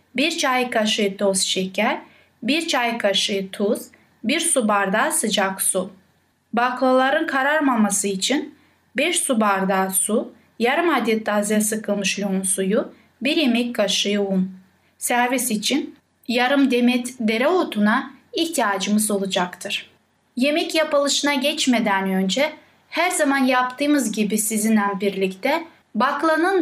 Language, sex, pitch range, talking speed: Turkish, female, 215-275 Hz, 110 wpm